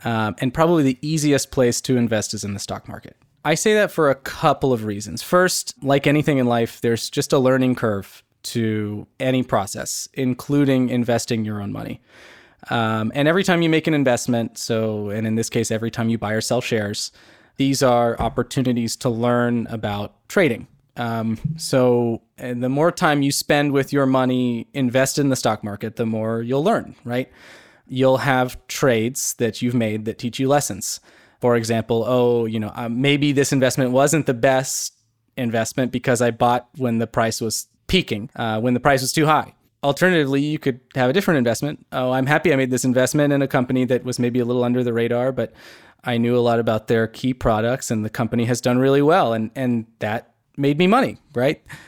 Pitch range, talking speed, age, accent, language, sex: 115-140 Hz, 200 wpm, 20-39, American, English, male